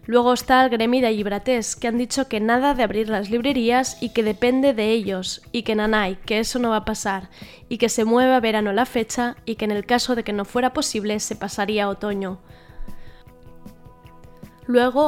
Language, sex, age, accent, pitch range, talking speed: Spanish, female, 10-29, Spanish, 215-245 Hz, 205 wpm